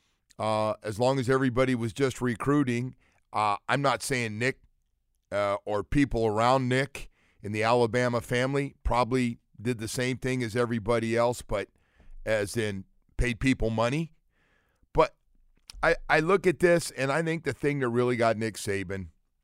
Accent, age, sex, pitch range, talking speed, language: American, 40-59, male, 100-140 Hz, 160 wpm, English